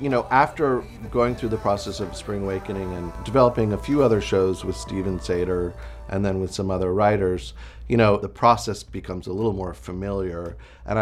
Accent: American